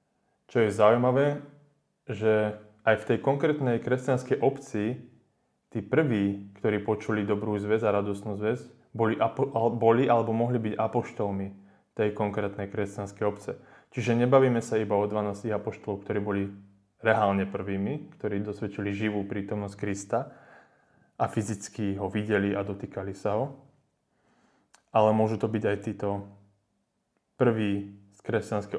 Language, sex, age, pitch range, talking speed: Slovak, male, 20-39, 100-115 Hz, 125 wpm